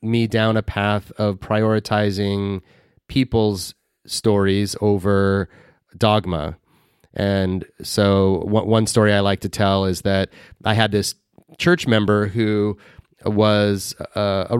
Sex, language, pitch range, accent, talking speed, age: male, English, 95-115 Hz, American, 125 wpm, 30-49